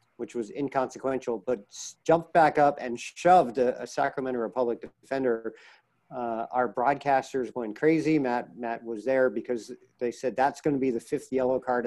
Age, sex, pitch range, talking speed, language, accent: 50-69, male, 120-140 Hz, 165 wpm, English, American